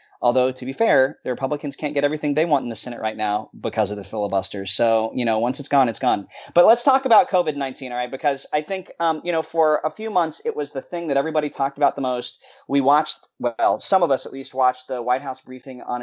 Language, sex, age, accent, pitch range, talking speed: English, male, 30-49, American, 125-155 Hz, 260 wpm